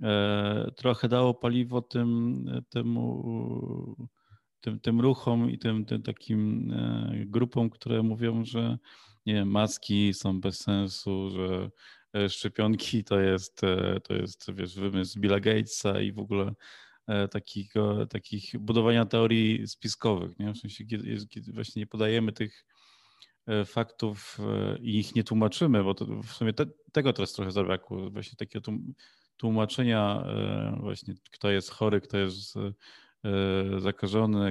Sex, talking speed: male, 130 wpm